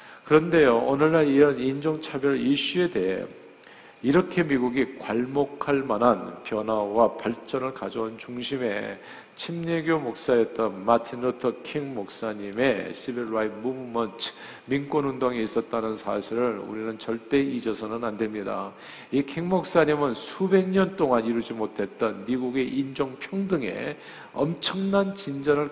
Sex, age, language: male, 50-69, Korean